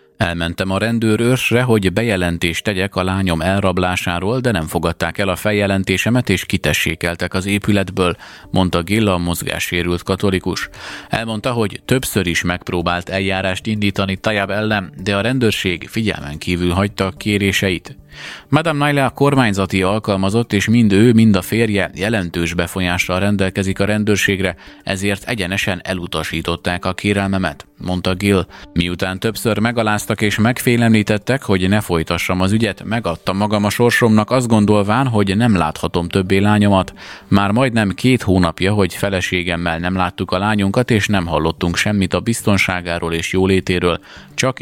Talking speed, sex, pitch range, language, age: 140 wpm, male, 90-105 Hz, Hungarian, 30-49